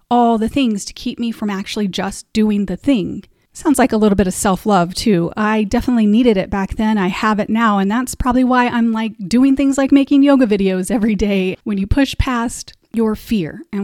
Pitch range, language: 195-245 Hz, English